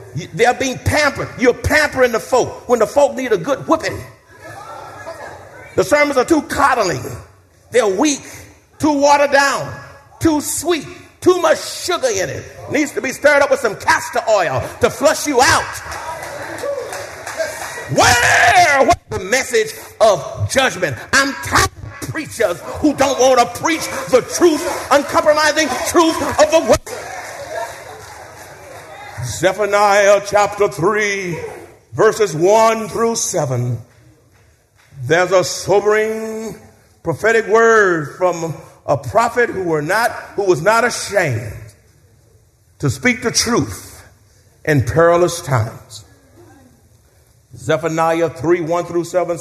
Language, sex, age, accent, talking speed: English, male, 50-69, American, 120 wpm